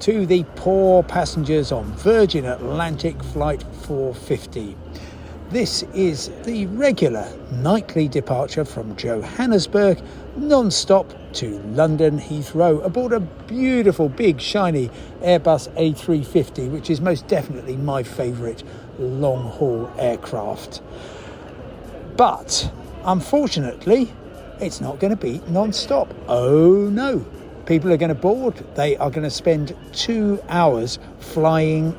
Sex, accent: male, British